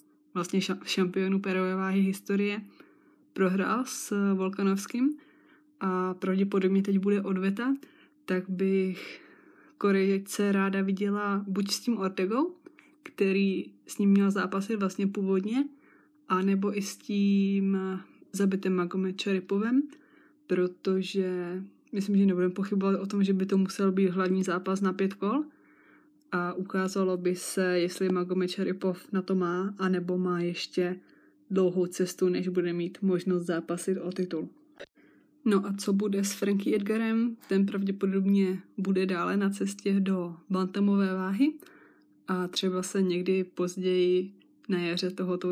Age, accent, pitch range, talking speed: 20-39, native, 185-200 Hz, 130 wpm